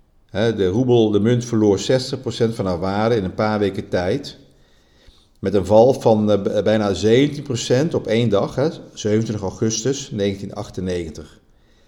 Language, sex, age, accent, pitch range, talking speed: Dutch, male, 50-69, Dutch, 100-125 Hz, 125 wpm